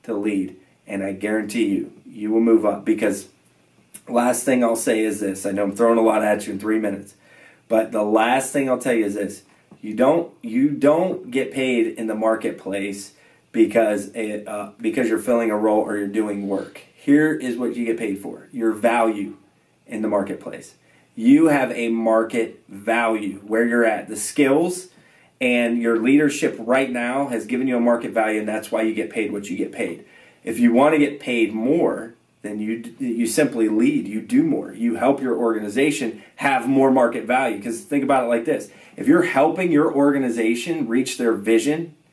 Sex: male